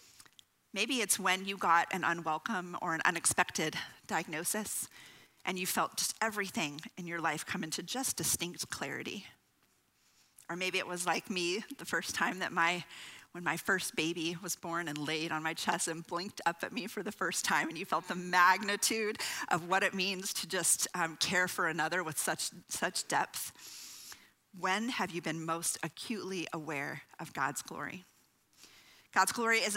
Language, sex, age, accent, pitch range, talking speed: English, female, 40-59, American, 175-220 Hz, 175 wpm